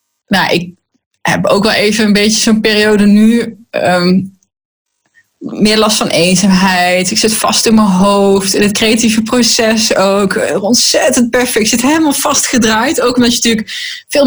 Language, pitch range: Dutch, 195-245 Hz